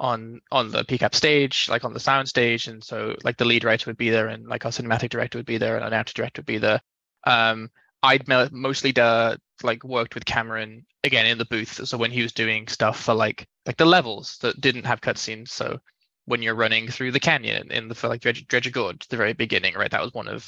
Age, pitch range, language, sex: 20-39, 115-130 Hz, English, male